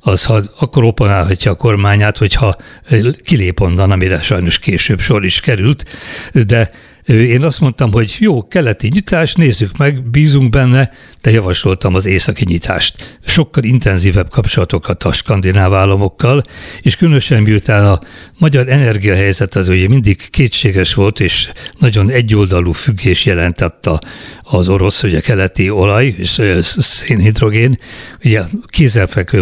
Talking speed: 130 wpm